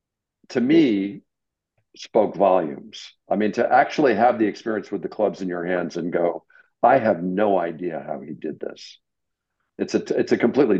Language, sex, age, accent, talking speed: English, male, 50-69, American, 180 wpm